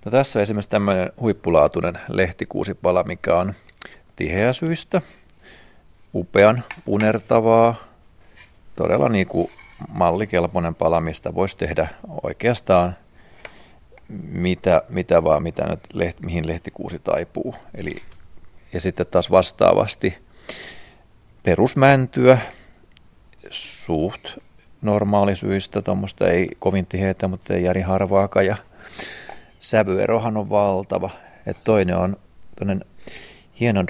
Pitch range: 90-105 Hz